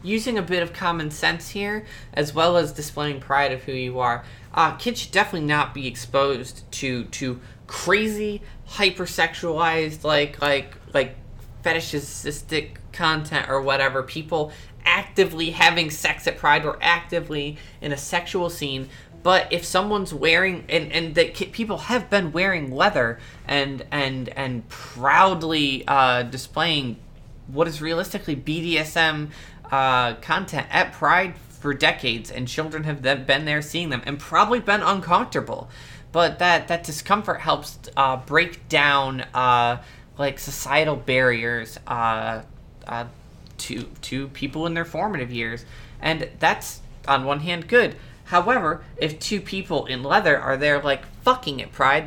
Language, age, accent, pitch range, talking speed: English, 20-39, American, 135-170 Hz, 145 wpm